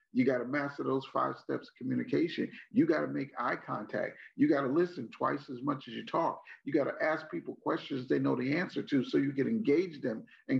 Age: 50-69